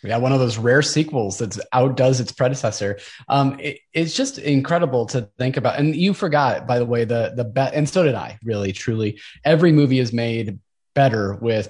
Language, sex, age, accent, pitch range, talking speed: English, male, 20-39, American, 115-150 Hz, 200 wpm